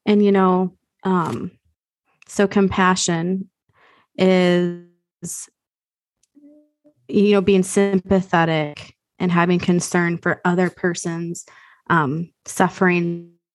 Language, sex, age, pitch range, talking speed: English, female, 20-39, 175-195 Hz, 85 wpm